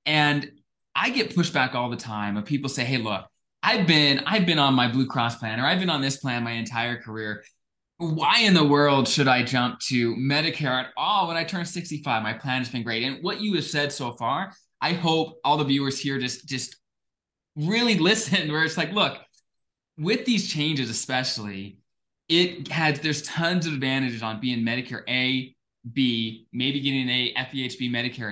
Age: 20-39